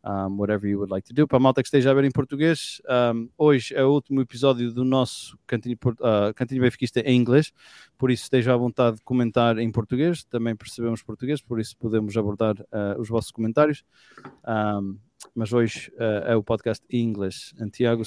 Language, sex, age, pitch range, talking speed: English, male, 20-39, 115-135 Hz, 200 wpm